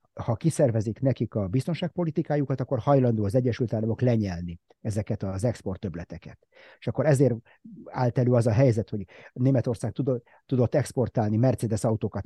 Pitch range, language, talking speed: 110-140 Hz, Hungarian, 140 wpm